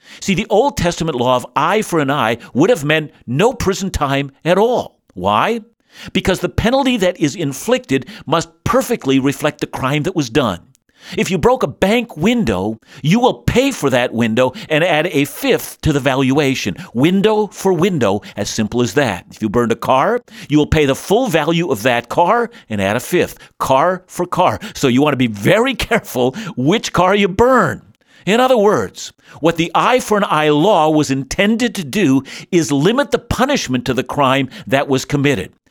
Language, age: English, 50-69